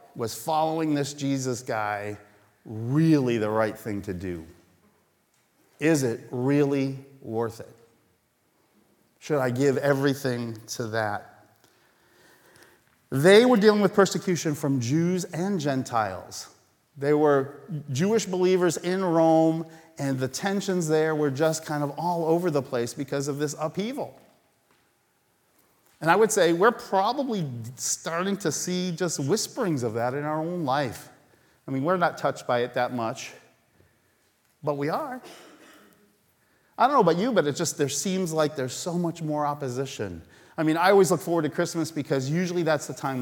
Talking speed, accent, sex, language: 155 wpm, American, male, English